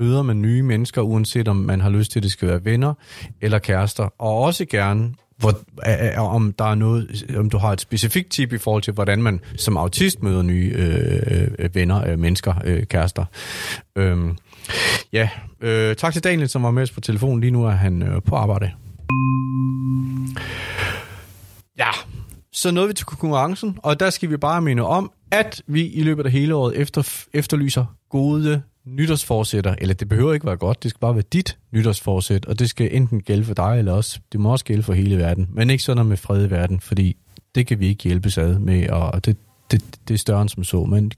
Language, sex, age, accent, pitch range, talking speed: Danish, male, 30-49, native, 100-130 Hz, 190 wpm